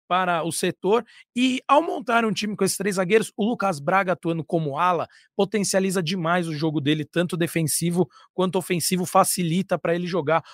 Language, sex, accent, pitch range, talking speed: Portuguese, male, Brazilian, 165-195 Hz, 175 wpm